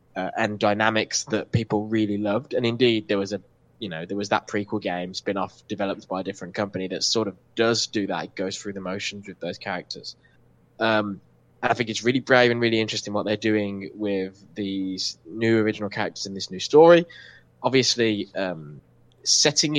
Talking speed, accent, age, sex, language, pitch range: 190 wpm, British, 10-29, male, English, 100-120 Hz